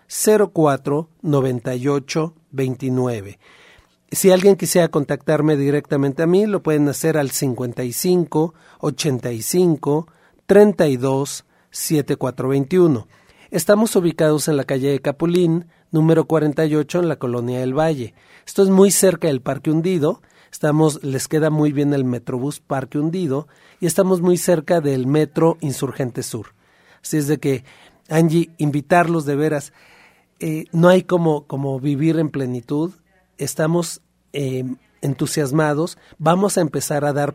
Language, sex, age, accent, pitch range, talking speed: Spanish, male, 40-59, Mexican, 140-170 Hz, 120 wpm